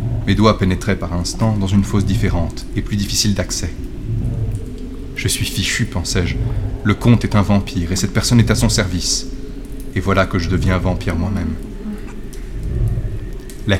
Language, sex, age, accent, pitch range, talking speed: French, male, 30-49, French, 95-120 Hz, 165 wpm